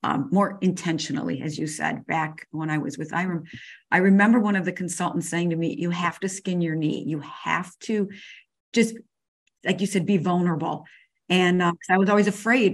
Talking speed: 200 wpm